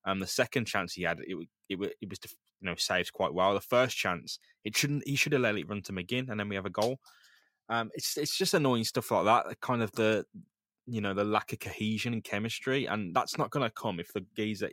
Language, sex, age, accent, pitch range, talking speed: English, male, 20-39, British, 105-130 Hz, 255 wpm